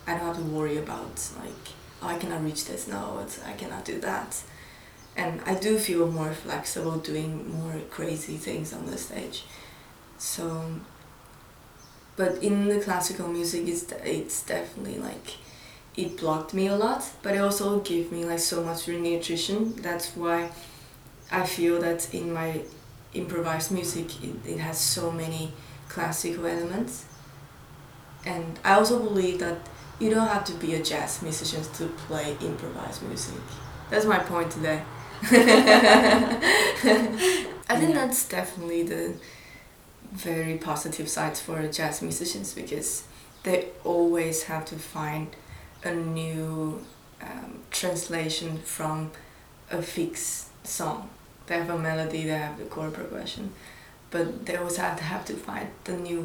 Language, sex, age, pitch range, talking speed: English, female, 20-39, 155-185 Hz, 145 wpm